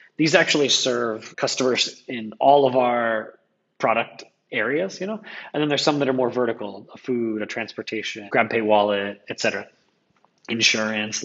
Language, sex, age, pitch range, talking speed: English, male, 30-49, 110-135 Hz, 160 wpm